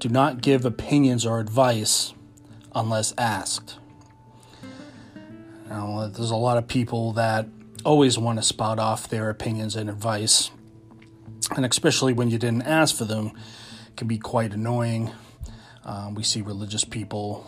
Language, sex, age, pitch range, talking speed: English, male, 30-49, 105-120 Hz, 140 wpm